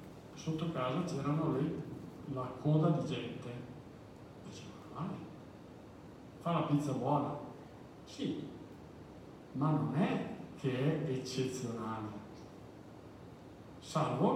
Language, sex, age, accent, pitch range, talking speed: Italian, male, 50-69, native, 120-150 Hz, 90 wpm